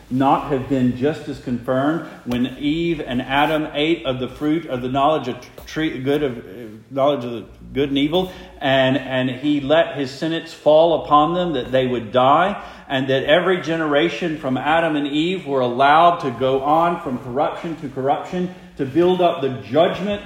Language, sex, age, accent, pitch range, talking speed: English, male, 50-69, American, 125-165 Hz, 180 wpm